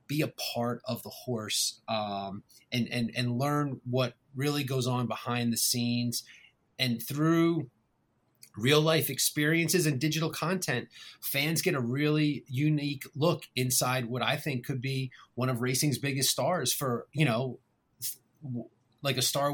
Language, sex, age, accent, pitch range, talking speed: English, male, 30-49, American, 120-140 Hz, 150 wpm